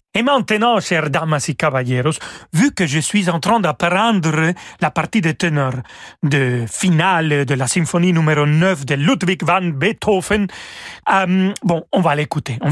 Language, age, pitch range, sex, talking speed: French, 40-59, 150-200 Hz, male, 160 wpm